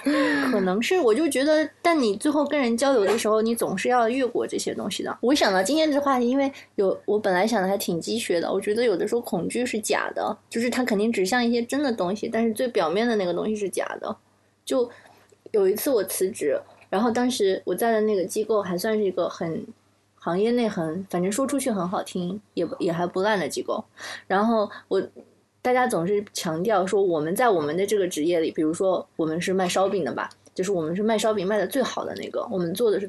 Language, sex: Chinese, female